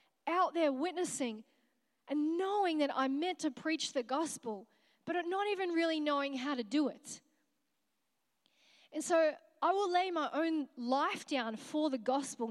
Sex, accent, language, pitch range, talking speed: female, Australian, English, 265-320 Hz, 160 wpm